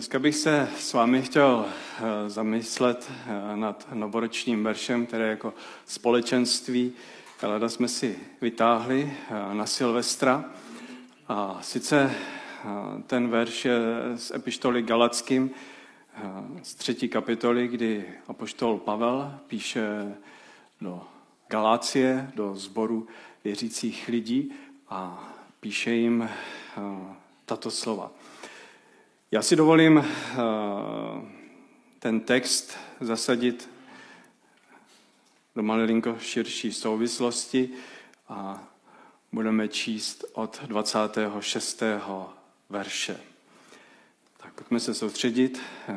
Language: Czech